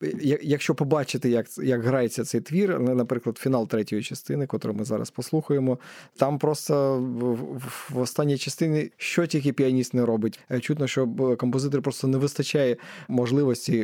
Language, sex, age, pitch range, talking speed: Ukrainian, male, 20-39, 125-150 Hz, 140 wpm